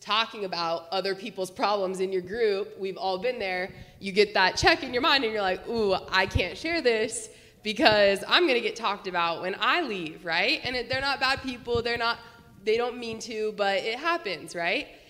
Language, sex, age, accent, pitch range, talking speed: English, female, 20-39, American, 190-240 Hz, 215 wpm